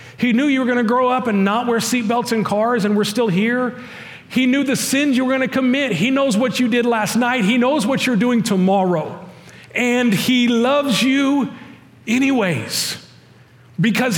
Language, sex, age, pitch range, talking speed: English, male, 40-59, 130-215 Hz, 195 wpm